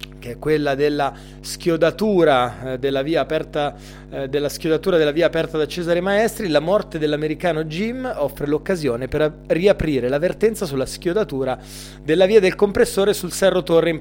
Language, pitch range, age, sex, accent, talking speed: Italian, 140-180 Hz, 30-49, male, native, 140 wpm